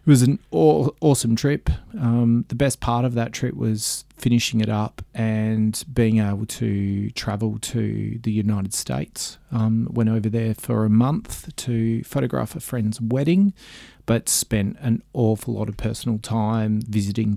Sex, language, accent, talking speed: male, English, Australian, 160 wpm